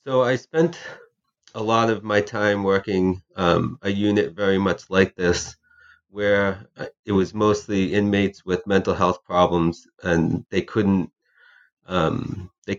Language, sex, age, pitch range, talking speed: English, male, 30-49, 90-105 Hz, 140 wpm